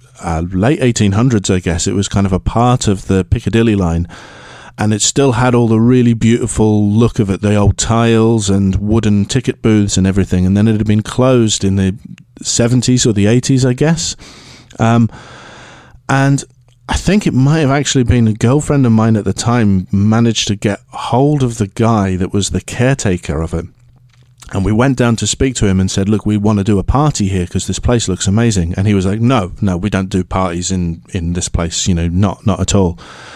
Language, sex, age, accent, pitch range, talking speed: English, male, 40-59, British, 100-125 Hz, 220 wpm